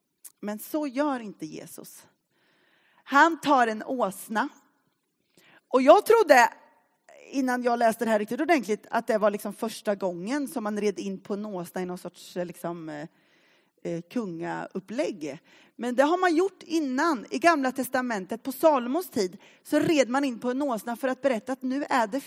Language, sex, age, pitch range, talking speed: Swedish, female, 30-49, 225-305 Hz, 170 wpm